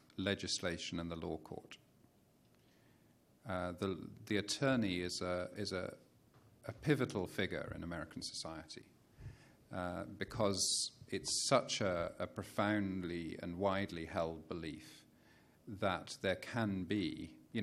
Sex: male